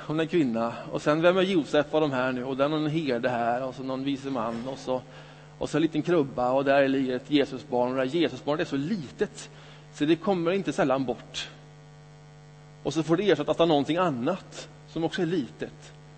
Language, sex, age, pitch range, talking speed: Swedish, male, 30-49, 135-155 Hz, 215 wpm